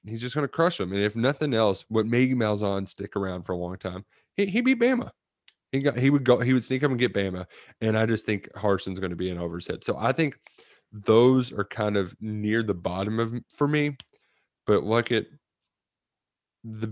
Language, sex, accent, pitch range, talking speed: English, male, American, 100-140 Hz, 220 wpm